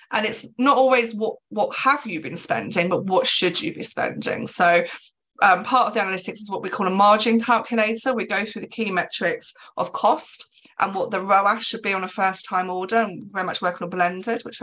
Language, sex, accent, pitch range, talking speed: English, female, British, 175-225 Hz, 220 wpm